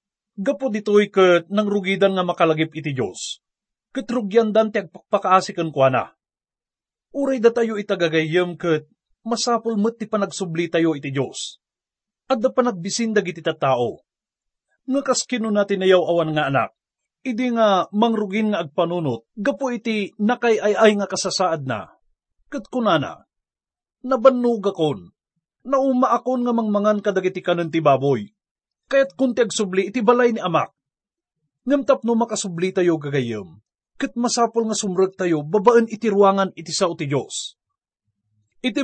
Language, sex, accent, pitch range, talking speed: English, male, Filipino, 165-235 Hz, 125 wpm